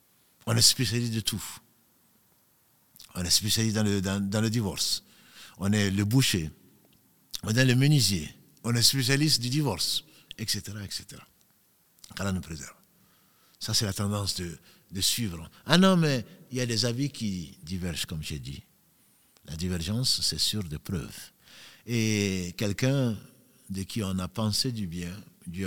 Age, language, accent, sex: 60-79, French, French, male